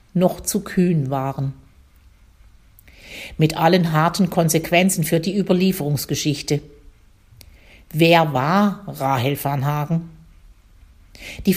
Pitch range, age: 145-195 Hz, 50-69